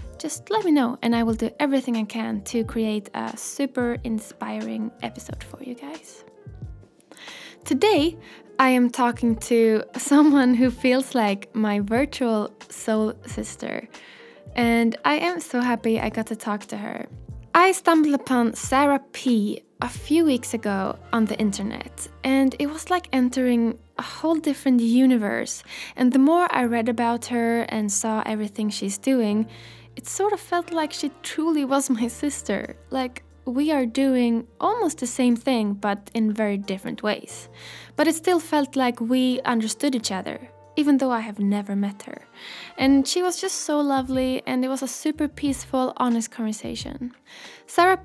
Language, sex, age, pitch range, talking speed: English, female, 10-29, 225-280 Hz, 165 wpm